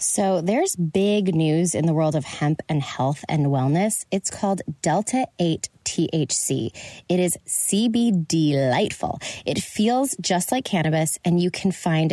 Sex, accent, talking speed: female, American, 155 wpm